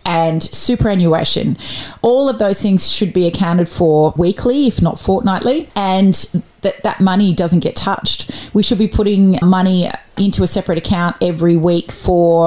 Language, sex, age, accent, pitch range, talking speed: English, female, 30-49, Australian, 165-195 Hz, 160 wpm